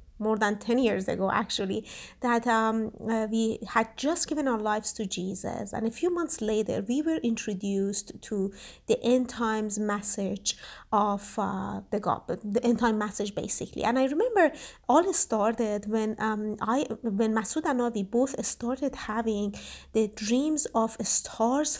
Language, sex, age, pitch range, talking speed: English, female, 30-49, 215-265 Hz, 160 wpm